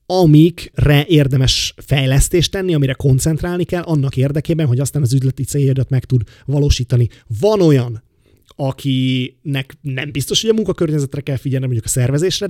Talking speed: 145 wpm